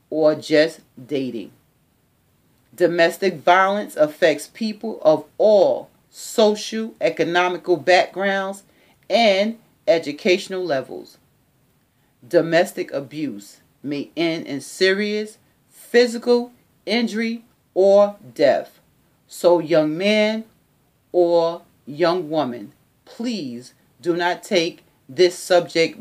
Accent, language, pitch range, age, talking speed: American, English, 165-215 Hz, 40-59, 85 wpm